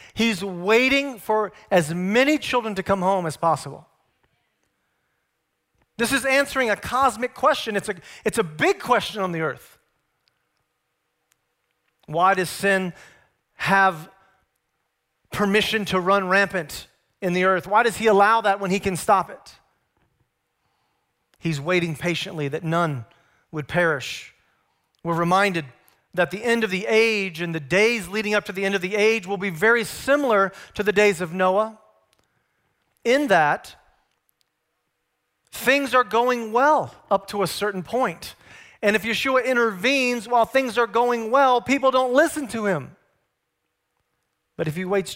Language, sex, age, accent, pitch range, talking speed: English, male, 40-59, American, 180-230 Hz, 145 wpm